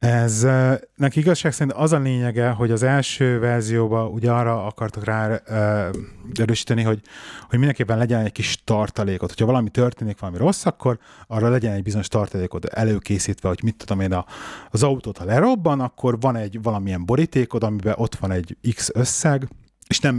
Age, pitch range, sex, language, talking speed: 30-49, 100-125 Hz, male, Hungarian, 165 wpm